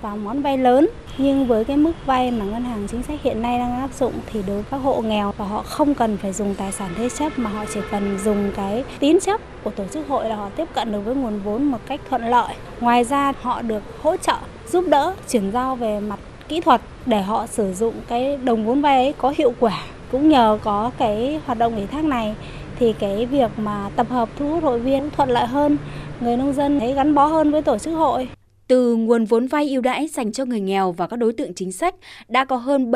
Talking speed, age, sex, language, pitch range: 250 wpm, 20-39, female, Vietnamese, 205-270 Hz